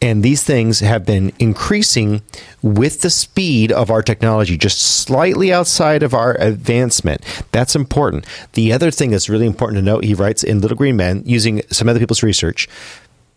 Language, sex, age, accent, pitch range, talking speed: English, male, 40-59, American, 100-120 Hz, 175 wpm